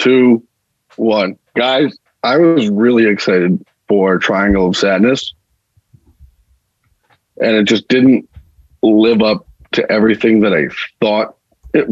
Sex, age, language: male, 40-59, English